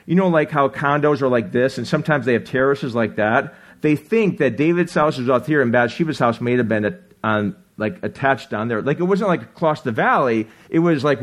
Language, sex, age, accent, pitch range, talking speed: English, male, 40-59, American, 120-175 Hz, 240 wpm